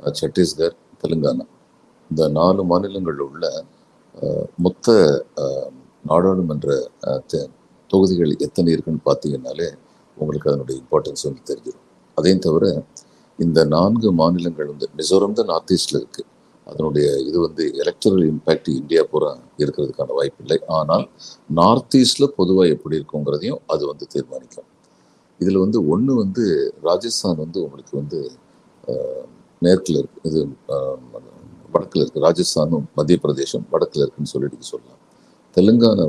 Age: 50-69